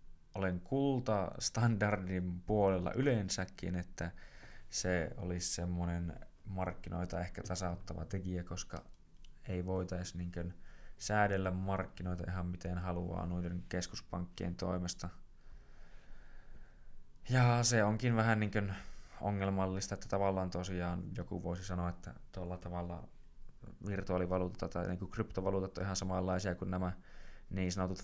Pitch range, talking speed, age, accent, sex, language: 90-100 Hz, 105 wpm, 20-39, native, male, Finnish